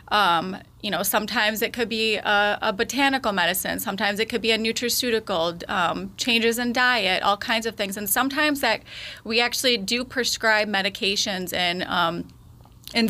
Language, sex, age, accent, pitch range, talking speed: English, female, 30-49, American, 205-240 Hz, 165 wpm